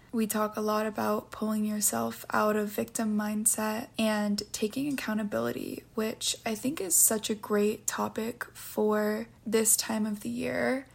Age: 20-39